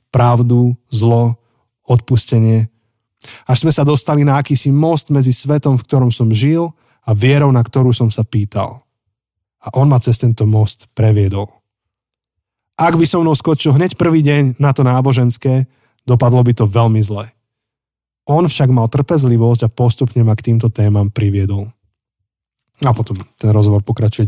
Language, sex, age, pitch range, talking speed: Slovak, male, 20-39, 110-135 Hz, 155 wpm